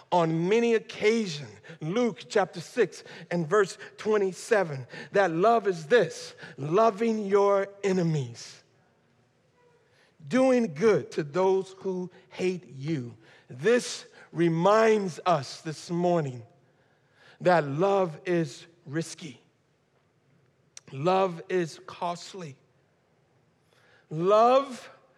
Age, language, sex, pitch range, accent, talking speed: 50-69, English, male, 160-255 Hz, American, 85 wpm